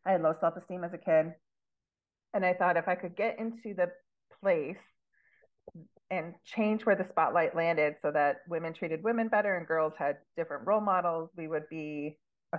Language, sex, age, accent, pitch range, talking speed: English, female, 30-49, American, 150-180 Hz, 185 wpm